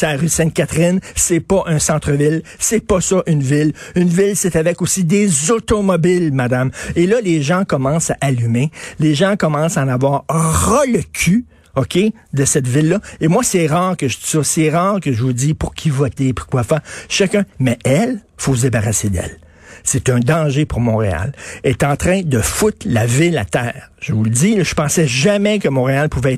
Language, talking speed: French, 210 wpm